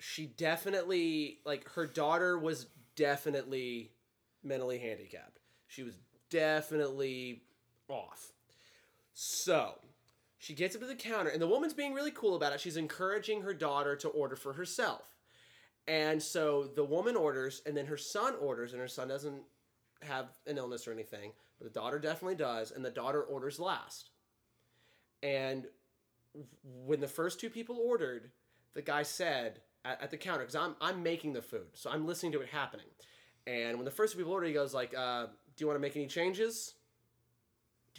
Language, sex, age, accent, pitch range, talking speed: English, male, 20-39, American, 120-170 Hz, 170 wpm